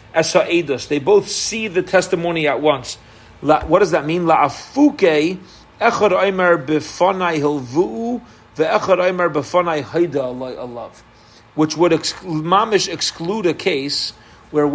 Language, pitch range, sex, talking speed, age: English, 145-190 Hz, male, 75 wpm, 40-59